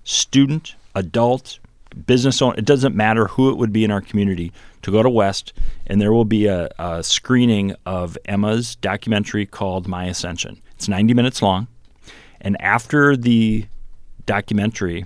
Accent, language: American, English